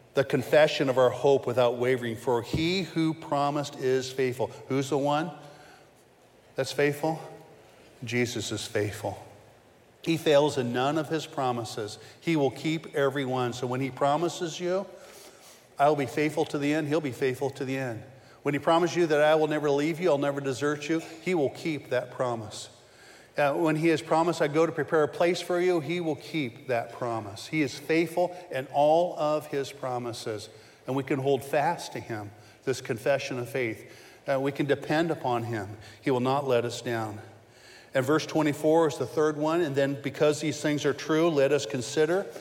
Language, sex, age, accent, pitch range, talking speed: English, male, 40-59, American, 125-155 Hz, 190 wpm